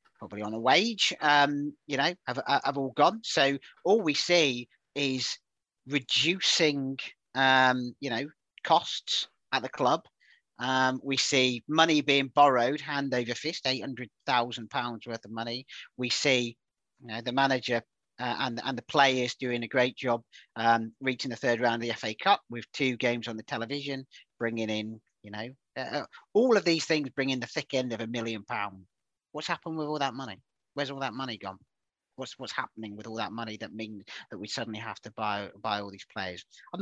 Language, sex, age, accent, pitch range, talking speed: English, male, 40-59, British, 115-140 Hz, 190 wpm